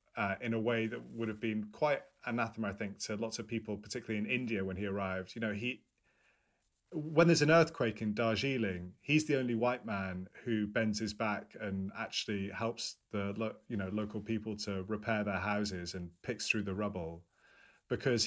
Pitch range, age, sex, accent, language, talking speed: 100-125 Hz, 30-49, male, British, English, 190 wpm